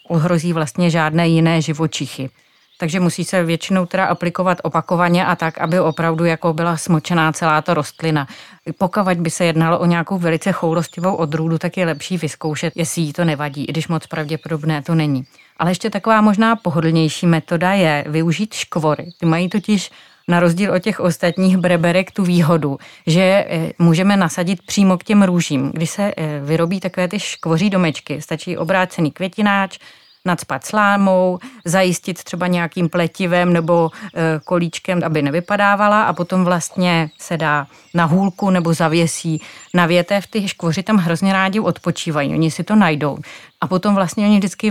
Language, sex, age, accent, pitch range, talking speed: Czech, female, 30-49, native, 160-185 Hz, 155 wpm